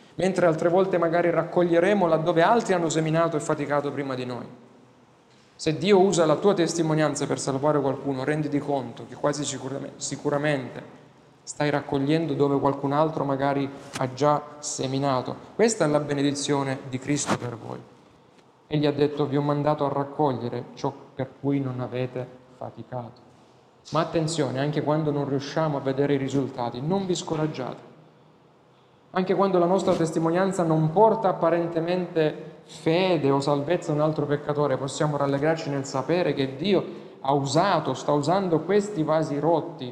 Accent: native